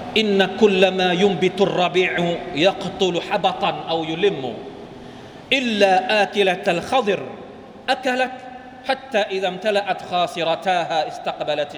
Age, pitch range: 40-59, 175-255 Hz